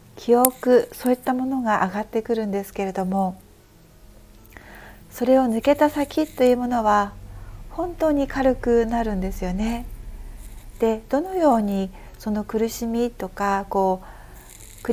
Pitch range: 195-250 Hz